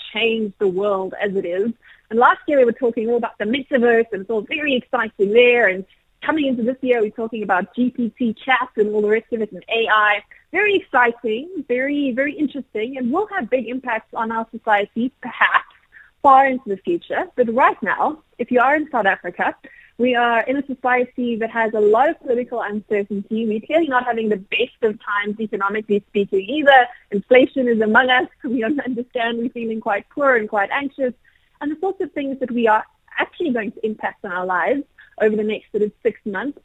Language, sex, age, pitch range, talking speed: English, female, 30-49, 215-270 Hz, 205 wpm